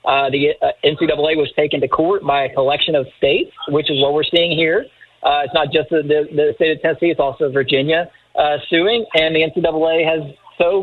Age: 40-59